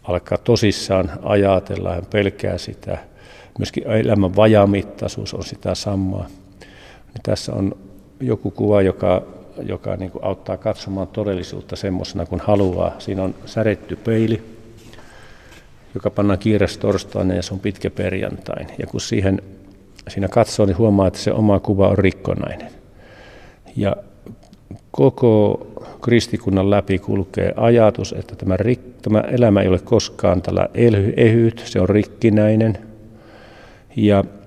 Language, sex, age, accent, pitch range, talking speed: Finnish, male, 50-69, native, 95-105 Hz, 125 wpm